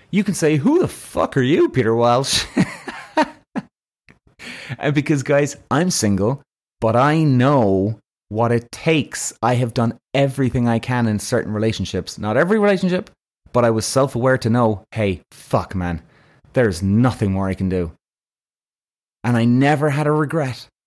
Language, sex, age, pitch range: English, male, 30-49, 115-150 Hz